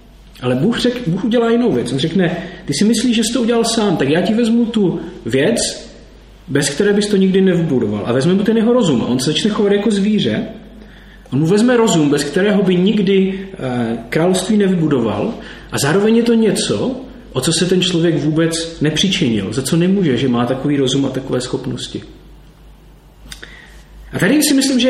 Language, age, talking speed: Czech, 40-59, 190 wpm